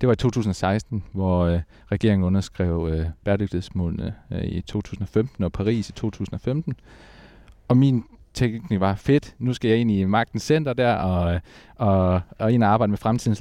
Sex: male